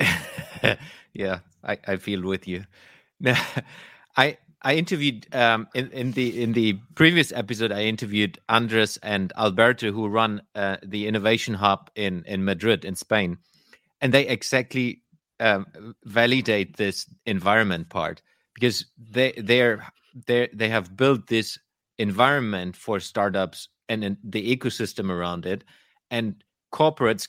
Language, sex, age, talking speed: English, male, 30-49, 130 wpm